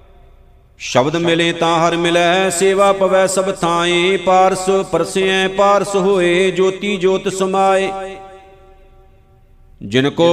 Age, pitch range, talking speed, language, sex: 50-69, 170-190 Hz, 100 wpm, Punjabi, male